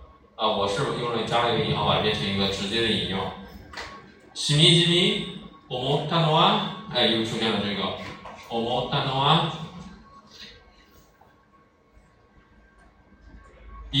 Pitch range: 110-160 Hz